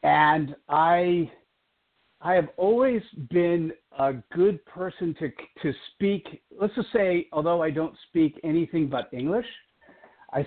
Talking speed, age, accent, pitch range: 130 wpm, 50-69, American, 140-185 Hz